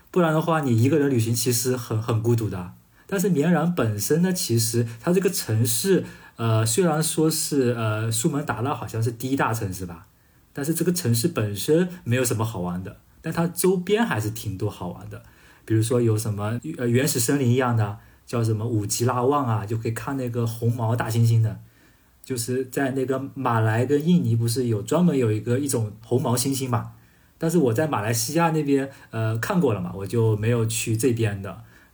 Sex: male